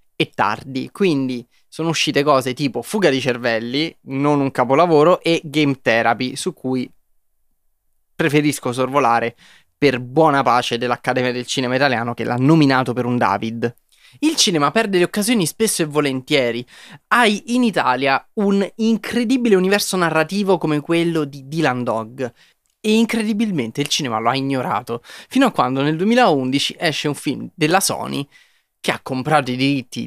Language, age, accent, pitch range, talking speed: Italian, 20-39, native, 125-195 Hz, 150 wpm